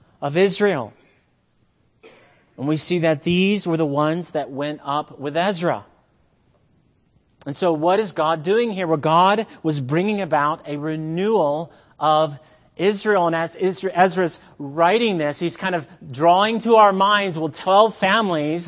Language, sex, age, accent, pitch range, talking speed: English, male, 30-49, American, 140-180 Hz, 150 wpm